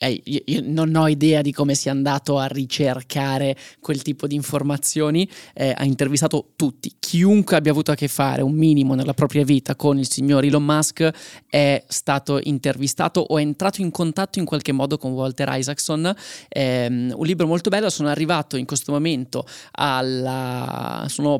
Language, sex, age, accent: Italian, male, 20-39, native